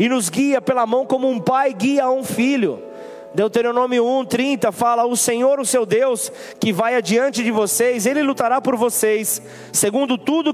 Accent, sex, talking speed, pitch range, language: Brazilian, male, 175 wpm, 225-270 Hz, Portuguese